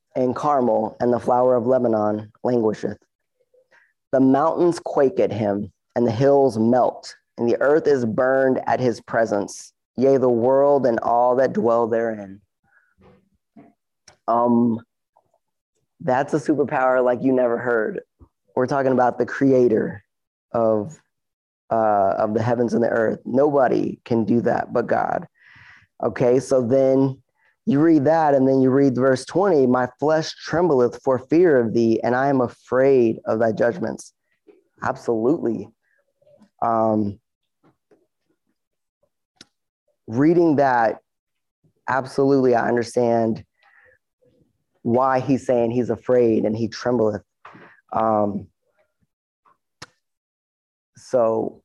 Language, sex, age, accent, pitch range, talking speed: English, male, 20-39, American, 115-135 Hz, 120 wpm